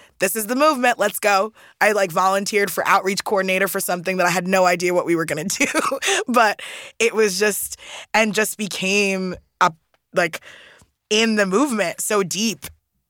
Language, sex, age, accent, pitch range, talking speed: English, female, 20-39, American, 190-240 Hz, 180 wpm